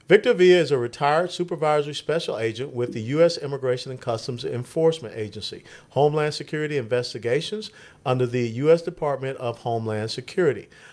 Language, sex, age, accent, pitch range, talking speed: English, male, 50-69, American, 120-170 Hz, 145 wpm